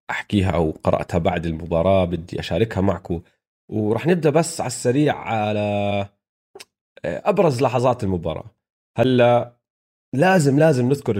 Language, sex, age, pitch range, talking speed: Arabic, male, 30-49, 95-125 Hz, 115 wpm